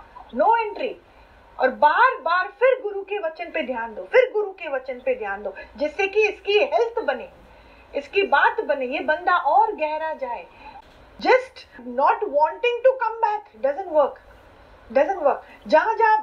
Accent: native